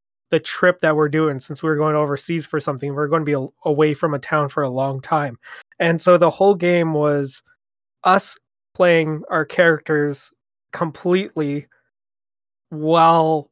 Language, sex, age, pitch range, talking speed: English, male, 20-39, 150-180 Hz, 155 wpm